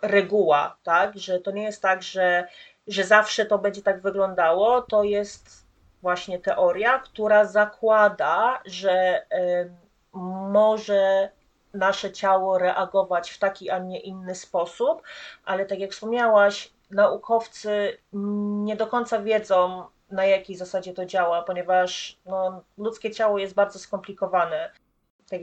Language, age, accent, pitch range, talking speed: Polish, 30-49, native, 180-205 Hz, 125 wpm